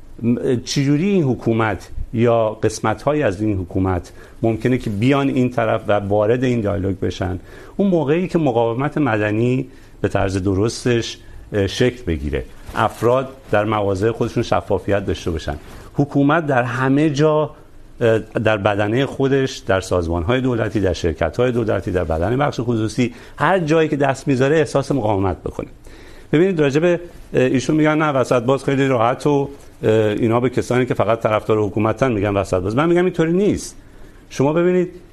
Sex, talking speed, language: male, 150 wpm, Urdu